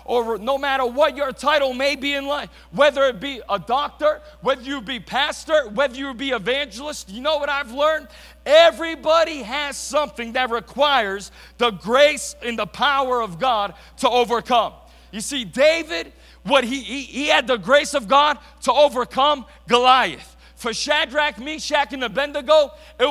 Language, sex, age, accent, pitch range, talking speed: English, male, 50-69, American, 245-300 Hz, 160 wpm